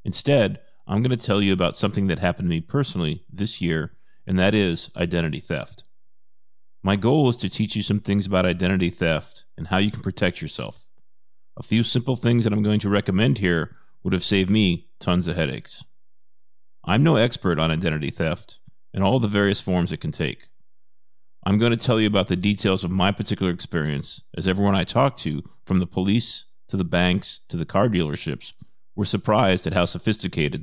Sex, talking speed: male, 195 wpm